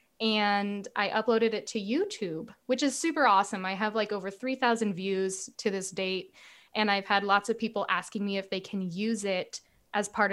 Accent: American